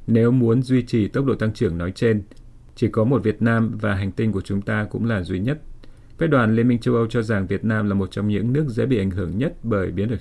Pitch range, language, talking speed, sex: 105-120 Hz, Vietnamese, 280 wpm, male